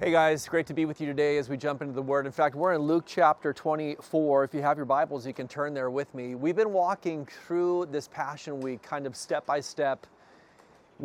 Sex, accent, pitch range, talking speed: male, American, 135-160 Hz, 235 wpm